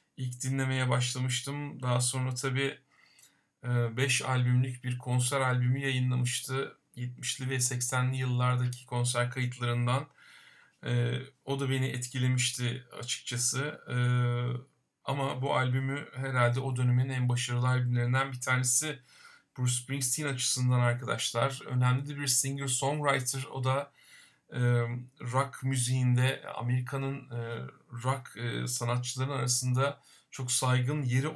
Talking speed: 100 wpm